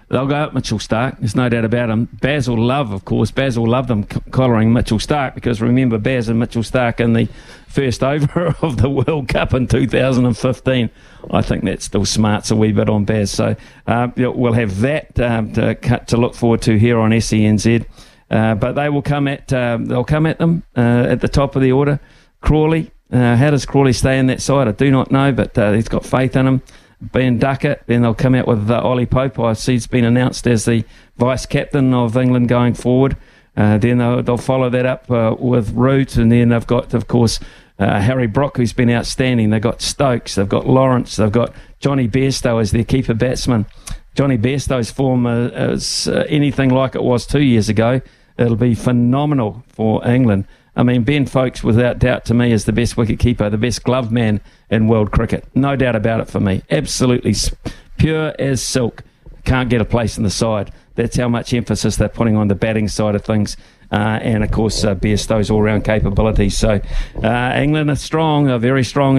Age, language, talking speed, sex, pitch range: 50-69, English, 205 wpm, male, 110-130 Hz